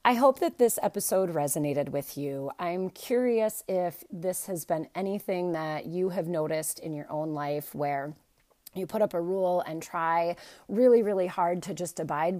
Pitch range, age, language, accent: 165-205 Hz, 30-49, English, American